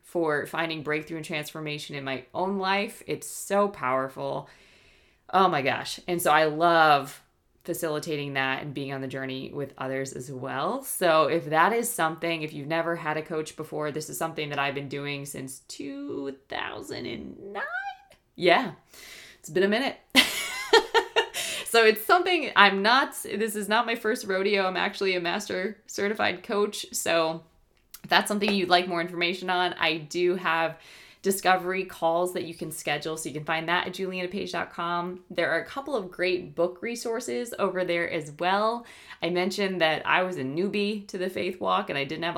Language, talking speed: English, 175 wpm